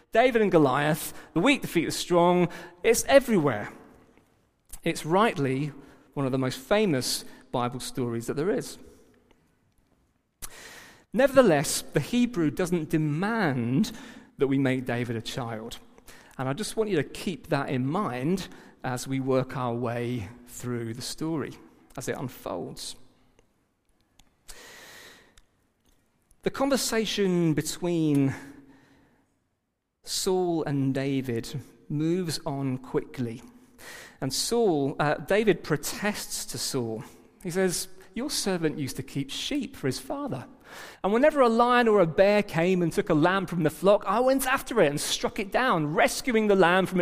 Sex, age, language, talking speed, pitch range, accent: male, 40-59, English, 140 wpm, 135-220 Hz, British